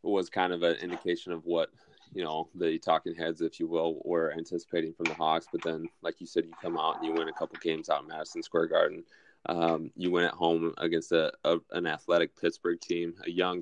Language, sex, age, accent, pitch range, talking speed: English, male, 20-39, American, 80-95 Hz, 240 wpm